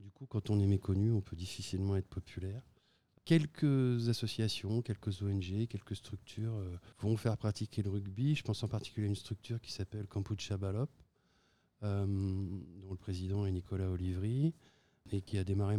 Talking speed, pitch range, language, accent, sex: 170 wpm, 95-115 Hz, French, French, male